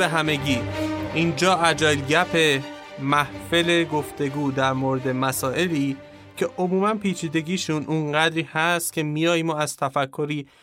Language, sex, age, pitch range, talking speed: Persian, male, 30-49, 140-175 Hz, 105 wpm